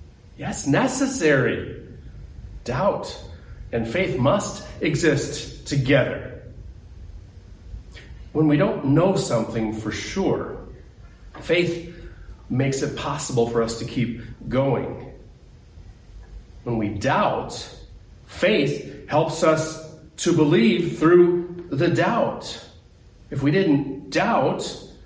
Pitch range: 105-170 Hz